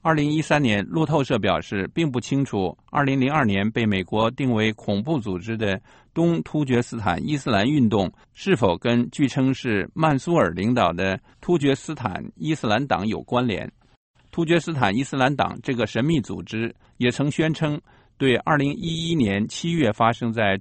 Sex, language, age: male, English, 50-69